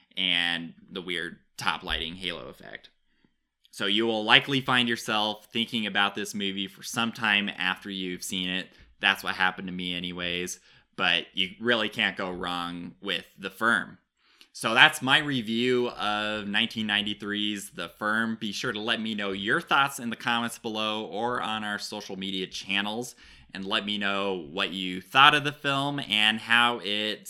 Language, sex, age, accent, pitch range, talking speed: English, male, 20-39, American, 95-115 Hz, 170 wpm